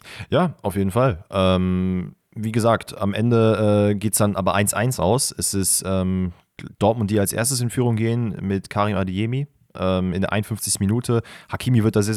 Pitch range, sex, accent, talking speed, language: 95-115 Hz, male, German, 170 wpm, German